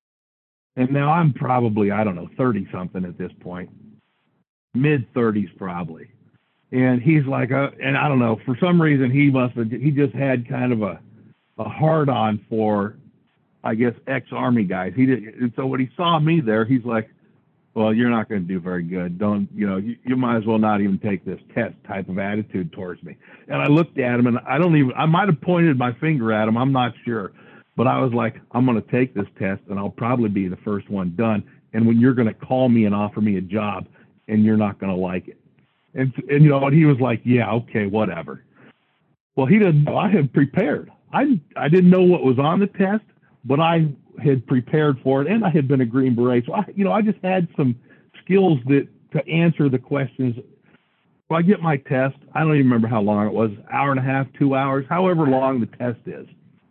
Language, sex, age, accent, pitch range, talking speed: English, male, 60-79, American, 110-145 Hz, 230 wpm